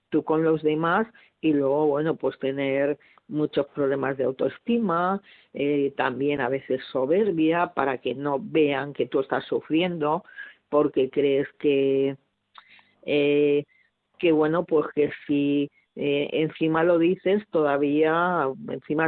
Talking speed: 130 wpm